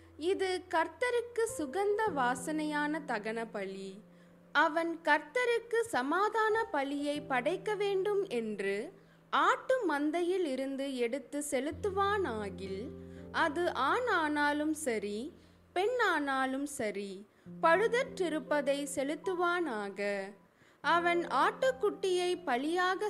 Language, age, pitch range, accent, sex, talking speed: Tamil, 20-39, 245-375 Hz, native, female, 75 wpm